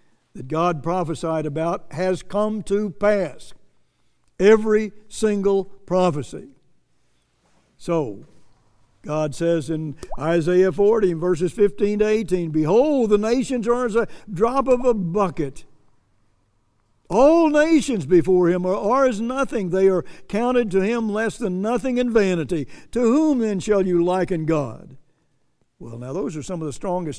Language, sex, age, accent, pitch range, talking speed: English, male, 60-79, American, 150-195 Hz, 140 wpm